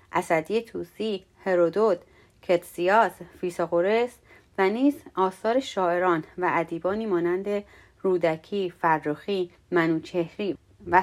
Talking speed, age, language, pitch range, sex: 85 wpm, 30-49, Persian, 175-225 Hz, female